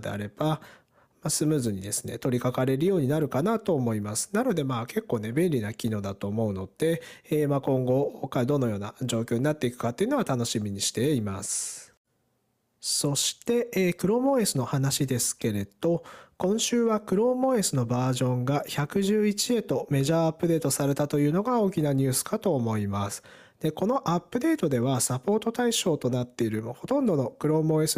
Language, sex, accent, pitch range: Japanese, male, native, 125-190 Hz